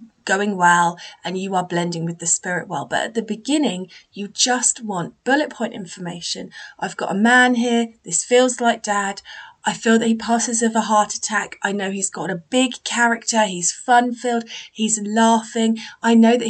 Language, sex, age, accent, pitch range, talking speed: English, female, 30-49, British, 180-230 Hz, 190 wpm